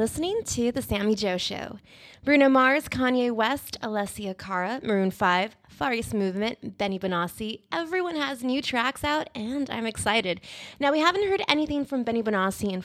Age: 20-39